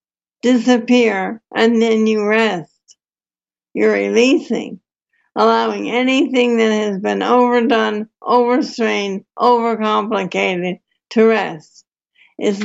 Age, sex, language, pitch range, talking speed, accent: 60-79, female, English, 215-235 Hz, 85 wpm, American